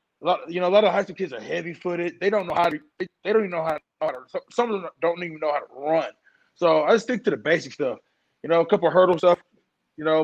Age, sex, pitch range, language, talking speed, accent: 20-39, male, 150-185 Hz, English, 285 wpm, American